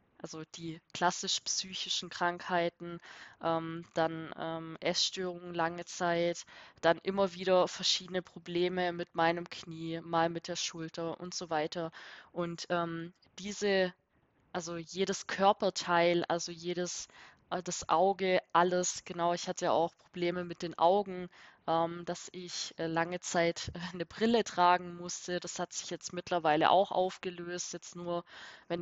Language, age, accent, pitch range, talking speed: German, 20-39, German, 170-185 Hz, 135 wpm